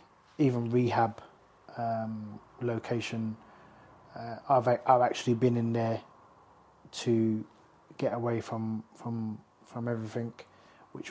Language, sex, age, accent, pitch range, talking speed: English, male, 20-39, British, 115-130 Hz, 105 wpm